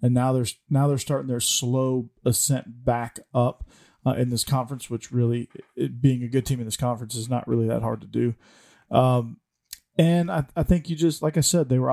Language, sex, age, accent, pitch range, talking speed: English, male, 40-59, American, 115-130 Hz, 220 wpm